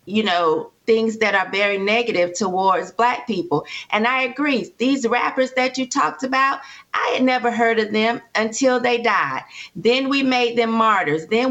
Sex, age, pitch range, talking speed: female, 40-59, 215-255 Hz, 175 wpm